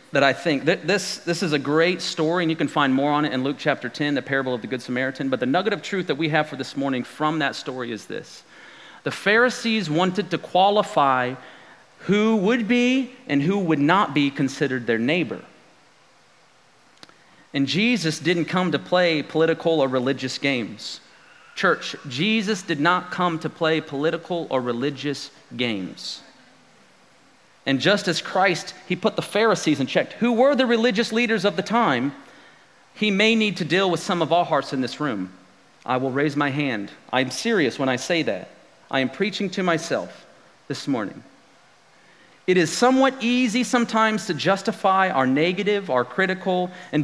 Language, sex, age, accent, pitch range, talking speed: English, male, 40-59, American, 140-200 Hz, 180 wpm